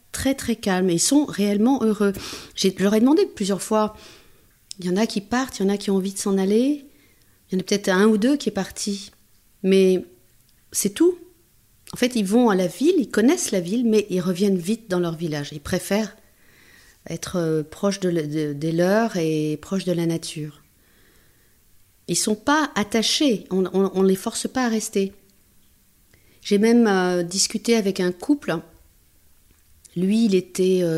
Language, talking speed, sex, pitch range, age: French, 190 wpm, female, 175-230 Hz, 40-59